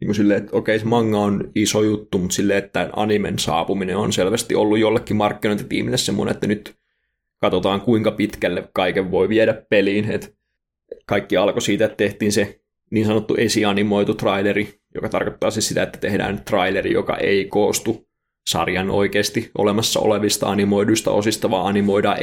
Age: 20-39